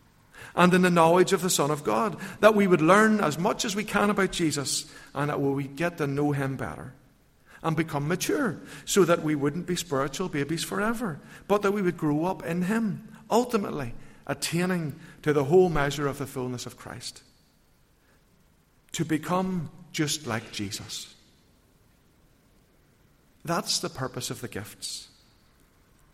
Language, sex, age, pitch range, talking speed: English, male, 50-69, 130-175 Hz, 160 wpm